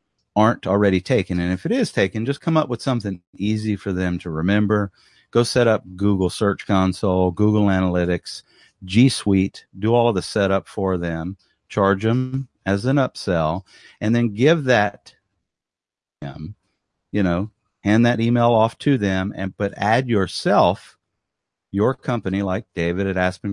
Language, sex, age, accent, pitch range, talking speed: English, male, 40-59, American, 85-110 Hz, 160 wpm